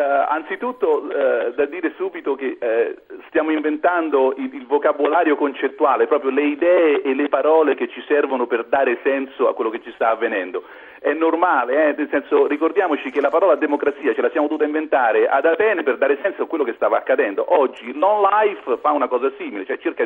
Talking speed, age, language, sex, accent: 195 wpm, 40-59, Italian, male, native